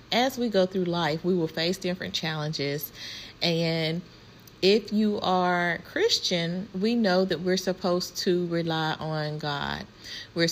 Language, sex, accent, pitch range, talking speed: English, female, American, 160-185 Hz, 145 wpm